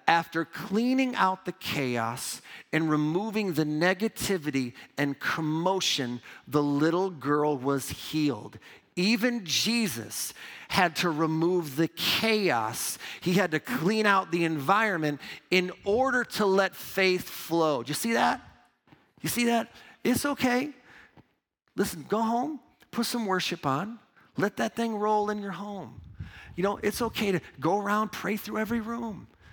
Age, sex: 40-59, male